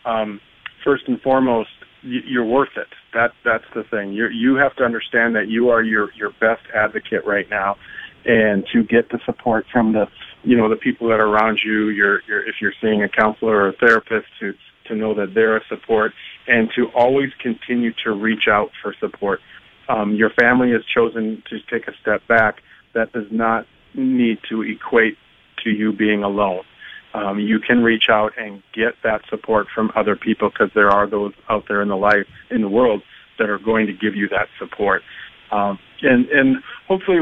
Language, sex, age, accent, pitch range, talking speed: English, male, 40-59, American, 110-120 Hz, 195 wpm